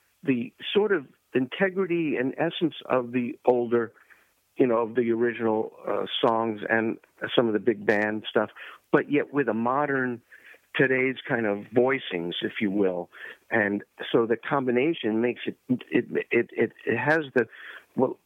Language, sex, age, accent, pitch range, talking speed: English, male, 50-69, American, 115-140 Hz, 160 wpm